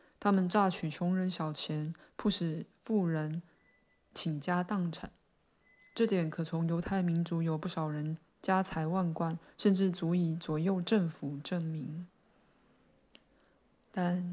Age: 20-39